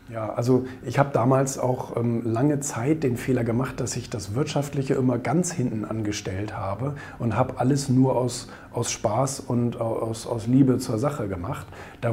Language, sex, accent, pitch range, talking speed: German, male, German, 115-135 Hz, 180 wpm